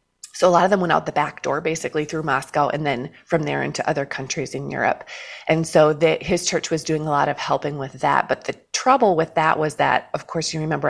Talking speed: 255 wpm